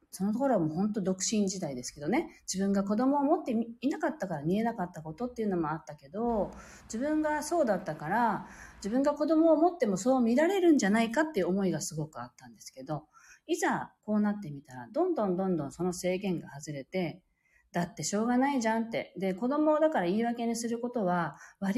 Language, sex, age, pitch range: Japanese, female, 40-59, 165-260 Hz